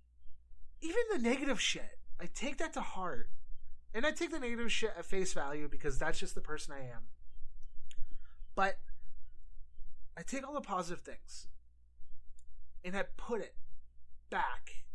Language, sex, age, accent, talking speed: English, male, 30-49, American, 150 wpm